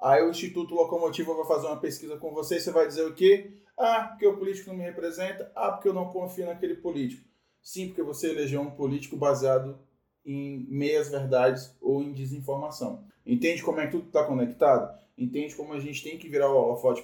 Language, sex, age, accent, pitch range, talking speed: Portuguese, male, 20-39, Brazilian, 135-190 Hz, 210 wpm